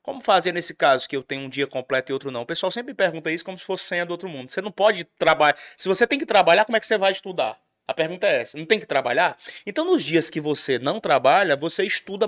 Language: Portuguese